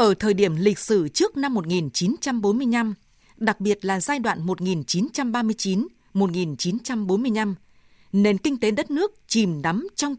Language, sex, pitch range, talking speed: Vietnamese, female, 185-235 Hz, 130 wpm